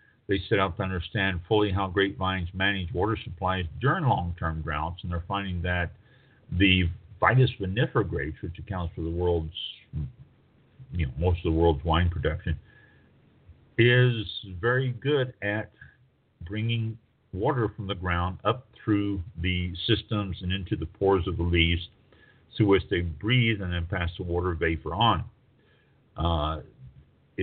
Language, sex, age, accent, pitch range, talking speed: English, male, 50-69, American, 85-115 Hz, 145 wpm